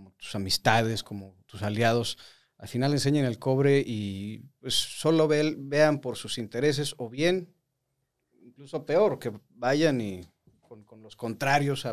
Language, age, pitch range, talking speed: Spanish, 40-59, 115-145 Hz, 155 wpm